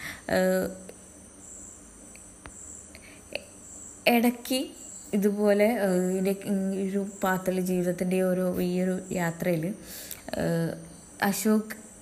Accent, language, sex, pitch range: native, Malayalam, female, 165-205 Hz